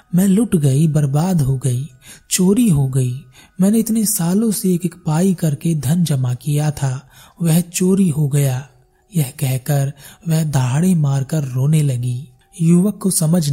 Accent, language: native, Hindi